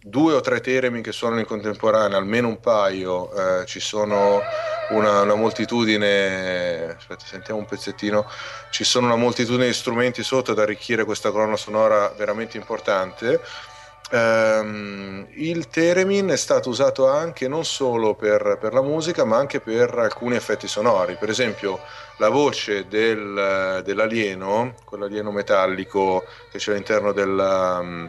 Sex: male